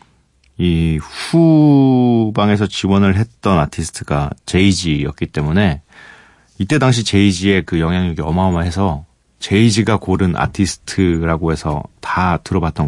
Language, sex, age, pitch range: Korean, male, 40-59, 80-115 Hz